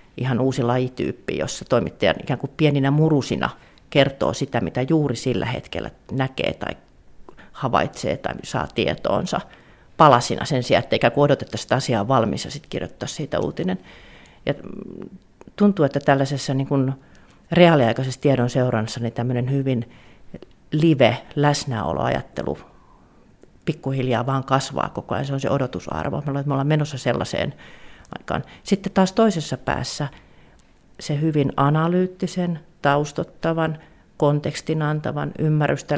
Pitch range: 130-165 Hz